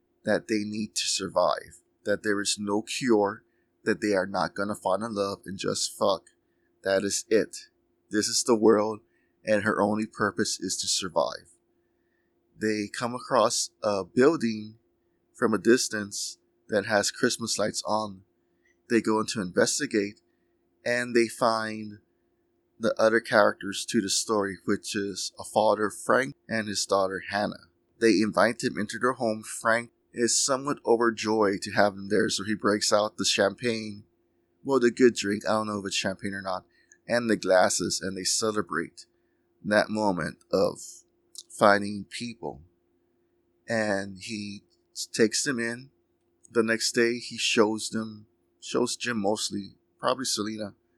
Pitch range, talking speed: 100-115 Hz, 155 wpm